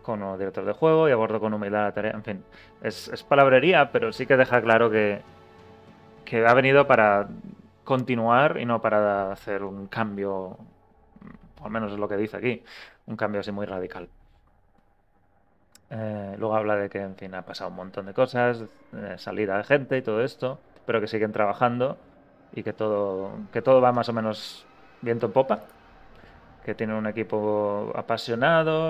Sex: male